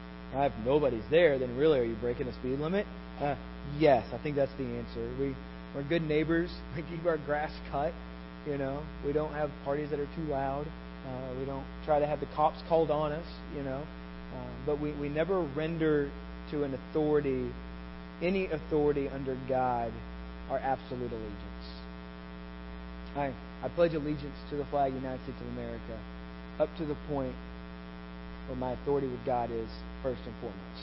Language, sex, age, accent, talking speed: English, male, 40-59, American, 175 wpm